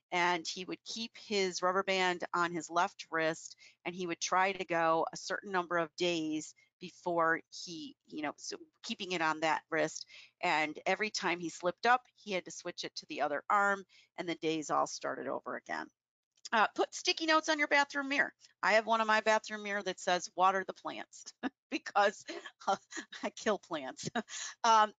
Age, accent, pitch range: 40-59, American, 170-230 Hz